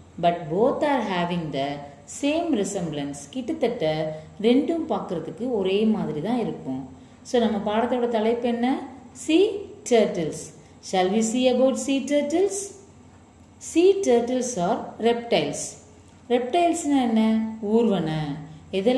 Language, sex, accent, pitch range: Tamil, female, native, 185-275 Hz